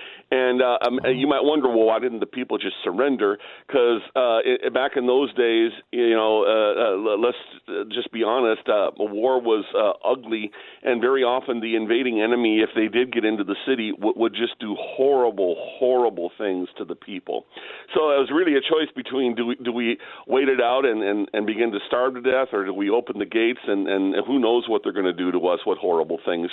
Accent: American